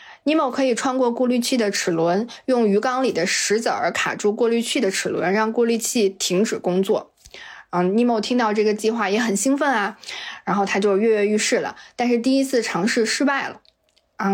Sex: female